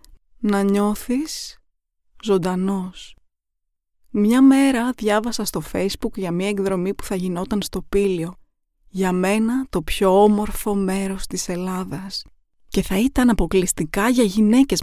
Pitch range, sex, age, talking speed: 185-220 Hz, female, 20-39, 120 wpm